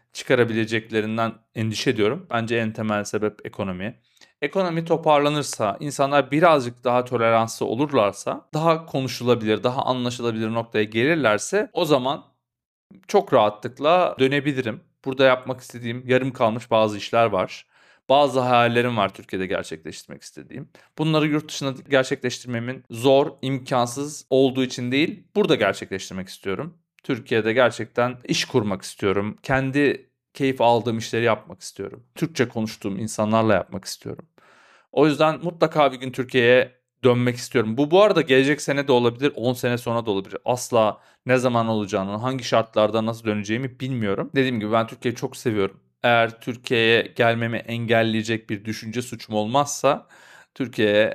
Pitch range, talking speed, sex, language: 110-135 Hz, 130 wpm, male, Turkish